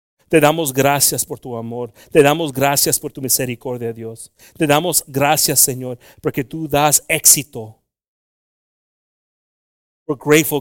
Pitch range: 115-140 Hz